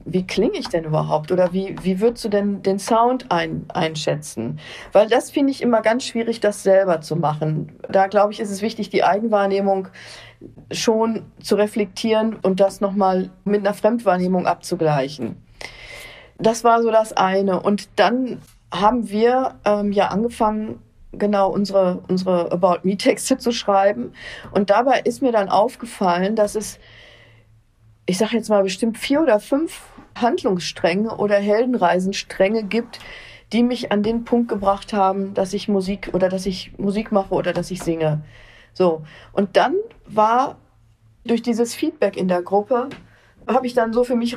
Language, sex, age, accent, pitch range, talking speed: German, female, 40-59, German, 180-225 Hz, 160 wpm